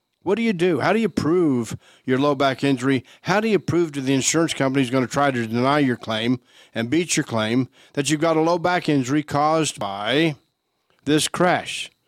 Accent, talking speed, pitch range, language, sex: American, 215 wpm, 130-155 Hz, English, male